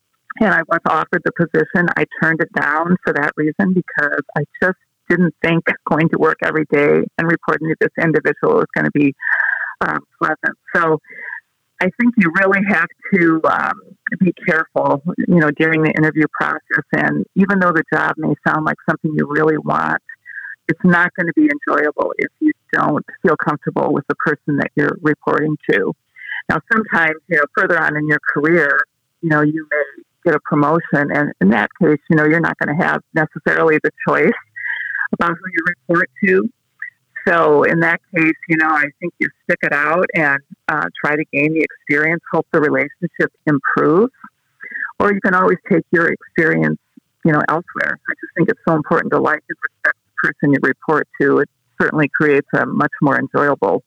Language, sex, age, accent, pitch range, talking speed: English, female, 50-69, American, 150-185 Hz, 190 wpm